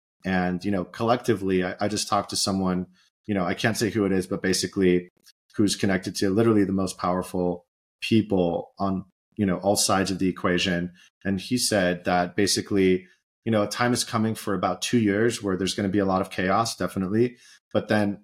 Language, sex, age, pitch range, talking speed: English, male, 30-49, 95-110 Hz, 205 wpm